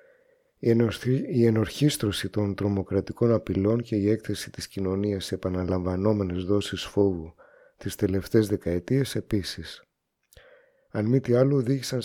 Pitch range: 100-120 Hz